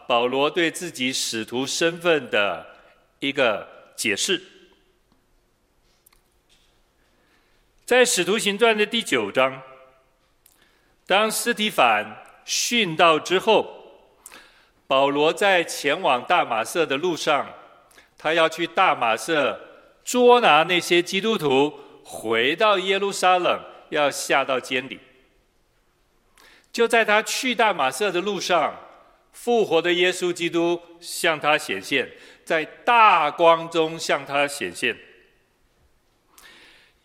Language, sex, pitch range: Chinese, male, 140-220 Hz